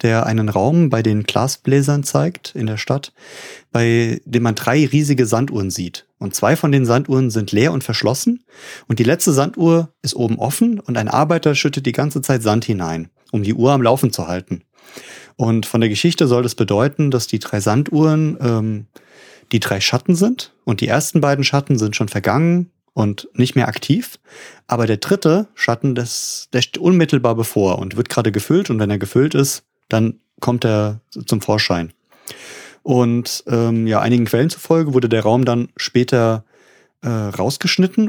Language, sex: German, male